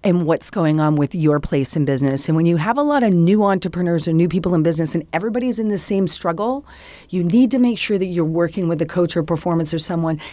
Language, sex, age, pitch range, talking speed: English, female, 40-59, 160-205 Hz, 255 wpm